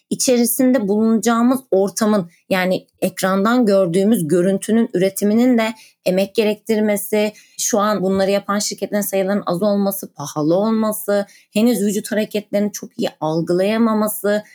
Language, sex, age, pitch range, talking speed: Turkish, female, 30-49, 175-225 Hz, 110 wpm